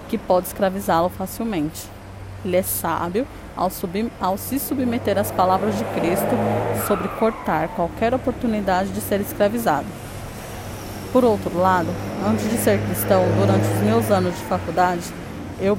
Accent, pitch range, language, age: Brazilian, 170-210 Hz, Portuguese, 20-39